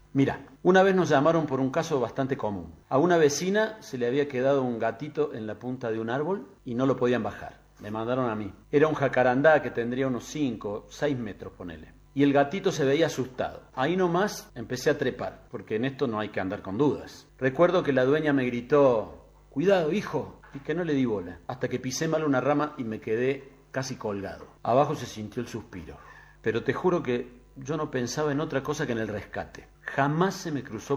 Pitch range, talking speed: 115-150 Hz, 215 wpm